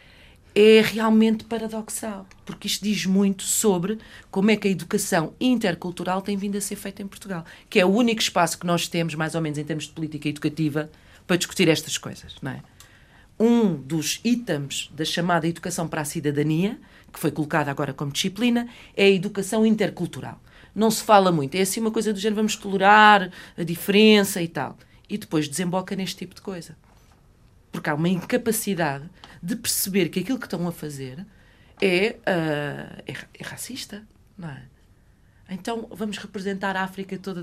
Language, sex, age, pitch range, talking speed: Portuguese, female, 40-59, 165-210 Hz, 175 wpm